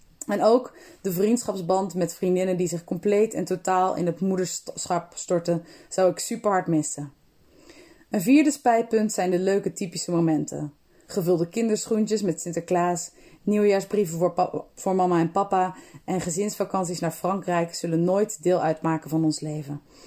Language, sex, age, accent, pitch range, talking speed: Dutch, female, 20-39, Dutch, 175-220 Hz, 150 wpm